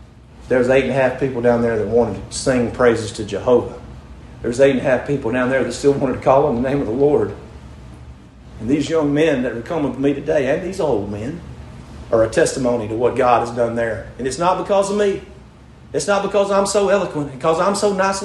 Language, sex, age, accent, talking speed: English, male, 40-59, American, 245 wpm